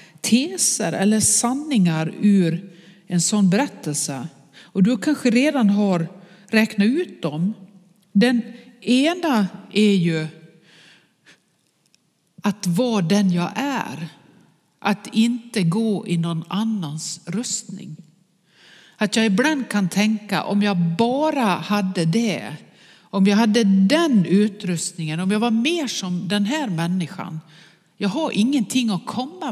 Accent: Swedish